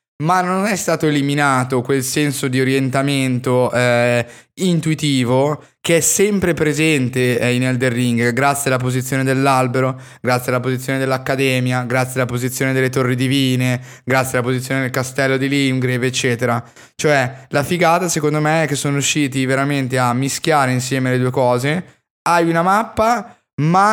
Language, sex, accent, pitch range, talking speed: Italian, male, native, 125-155 Hz, 155 wpm